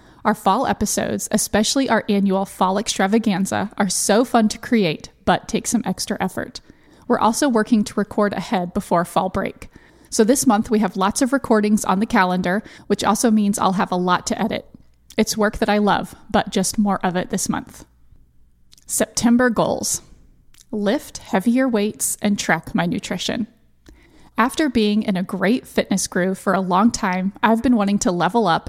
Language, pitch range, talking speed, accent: English, 190-225 Hz, 180 wpm, American